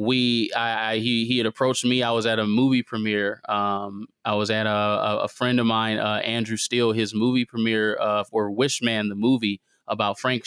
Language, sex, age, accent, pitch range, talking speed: English, male, 20-39, American, 110-125 Hz, 220 wpm